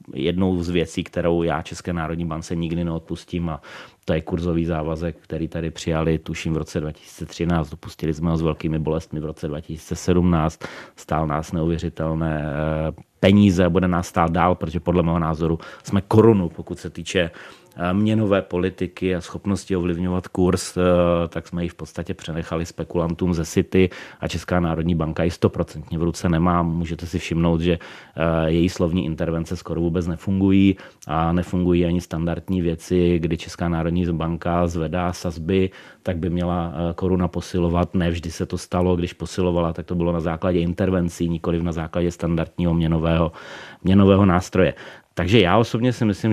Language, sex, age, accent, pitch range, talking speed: Czech, male, 30-49, native, 85-95 Hz, 160 wpm